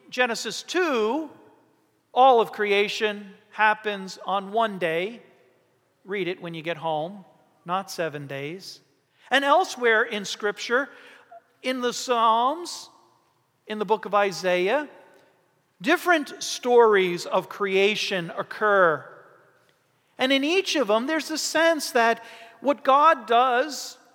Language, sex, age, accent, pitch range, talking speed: English, male, 40-59, American, 155-245 Hz, 115 wpm